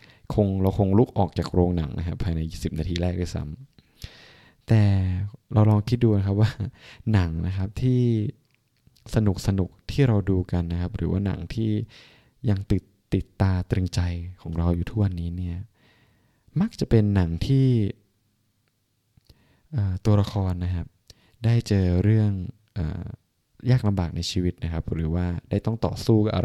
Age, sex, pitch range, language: 20-39, male, 90-110 Hz, Thai